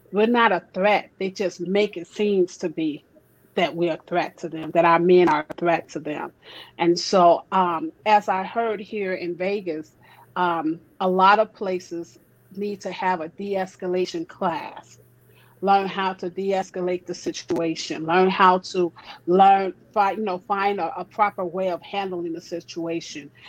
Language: English